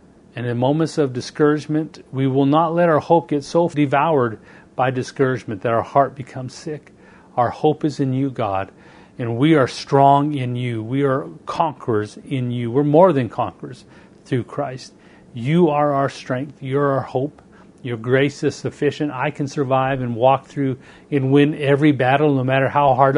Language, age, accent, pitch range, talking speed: English, 40-59, American, 125-150 Hz, 180 wpm